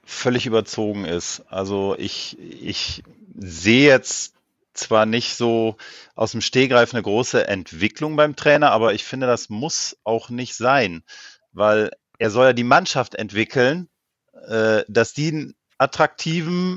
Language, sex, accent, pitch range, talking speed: German, male, German, 115-155 Hz, 140 wpm